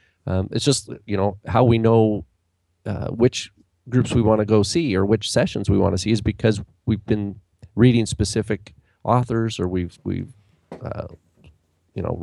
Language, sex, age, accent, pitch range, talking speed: English, male, 40-59, American, 95-115 Hz, 175 wpm